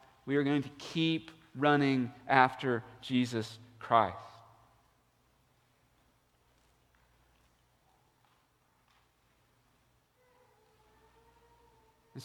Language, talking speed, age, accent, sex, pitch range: English, 50 wpm, 40-59, American, male, 115-145 Hz